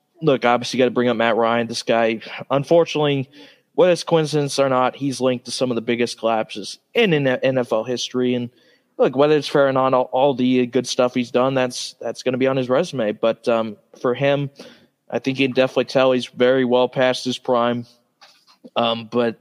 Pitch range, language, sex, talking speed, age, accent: 120-140 Hz, English, male, 210 wpm, 20-39, American